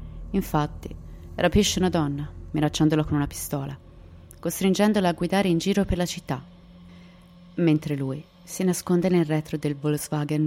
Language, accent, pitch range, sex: Italian, native, 135-175 Hz, female